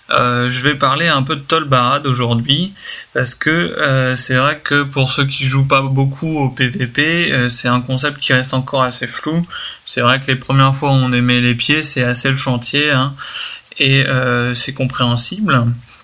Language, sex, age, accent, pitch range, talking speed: French, male, 20-39, French, 125-140 Hz, 195 wpm